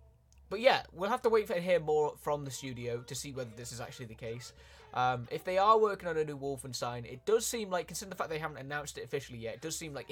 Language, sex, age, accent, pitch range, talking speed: Italian, male, 20-39, British, 120-160 Hz, 280 wpm